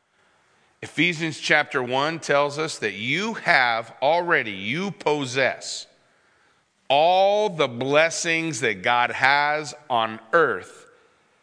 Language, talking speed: English, 100 wpm